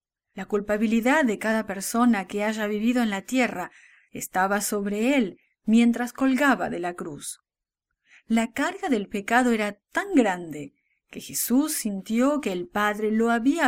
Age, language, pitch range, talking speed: 30-49, English, 205-260 Hz, 150 wpm